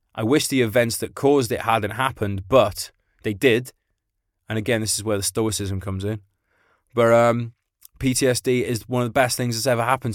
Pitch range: 105-135 Hz